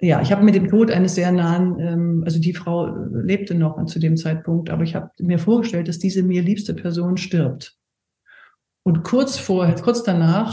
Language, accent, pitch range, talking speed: German, German, 165-210 Hz, 195 wpm